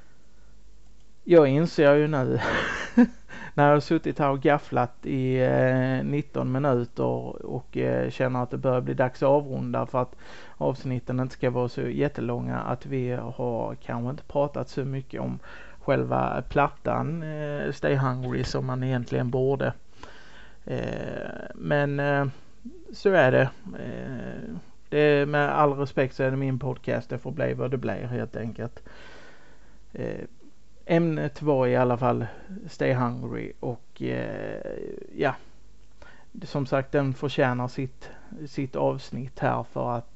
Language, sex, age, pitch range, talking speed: Swedish, male, 30-49, 120-145 Hz, 145 wpm